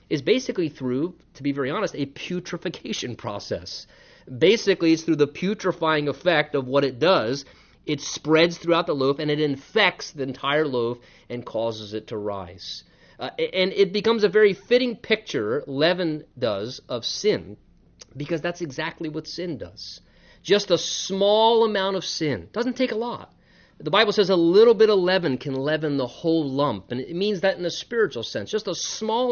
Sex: male